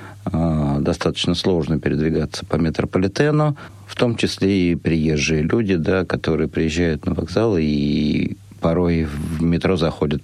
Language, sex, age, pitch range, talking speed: Russian, male, 50-69, 80-100 Hz, 115 wpm